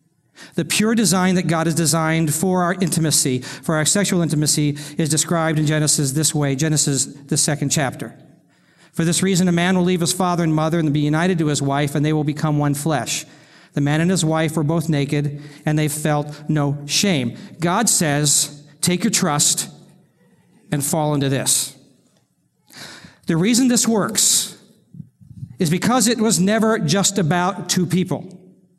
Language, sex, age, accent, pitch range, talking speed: English, male, 50-69, American, 160-215 Hz, 170 wpm